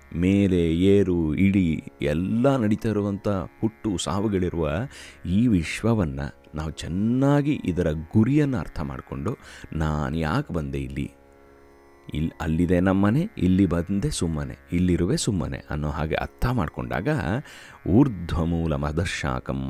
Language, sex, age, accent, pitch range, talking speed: Kannada, male, 30-49, native, 70-100 Hz, 105 wpm